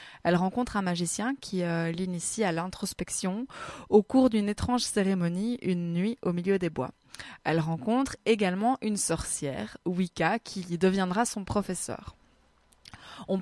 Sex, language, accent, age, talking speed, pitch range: female, French, French, 20-39, 140 wpm, 175-215 Hz